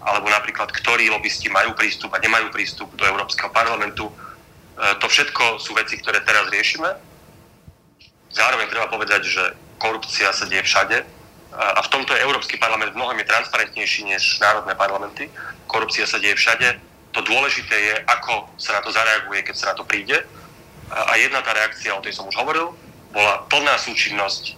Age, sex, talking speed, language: 30-49, male, 165 wpm, Slovak